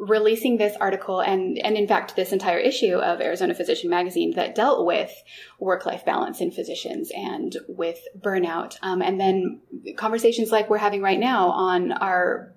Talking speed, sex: 170 wpm, female